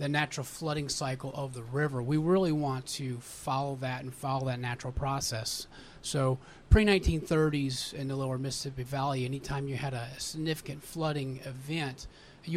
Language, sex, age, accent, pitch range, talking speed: English, male, 30-49, American, 135-155 Hz, 165 wpm